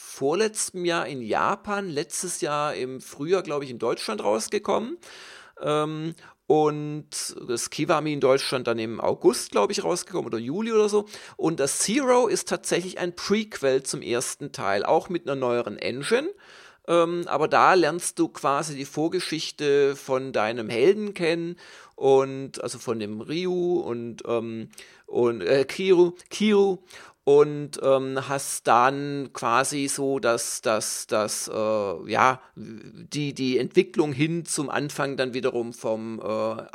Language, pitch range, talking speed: German, 130-175 Hz, 145 wpm